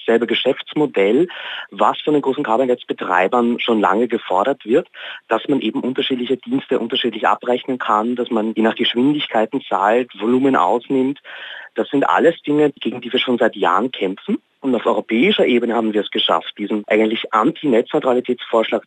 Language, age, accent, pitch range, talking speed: German, 30-49, German, 110-135 Hz, 160 wpm